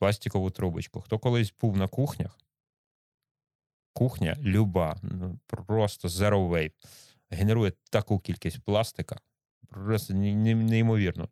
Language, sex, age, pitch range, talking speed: Ukrainian, male, 30-49, 95-125 Hz, 100 wpm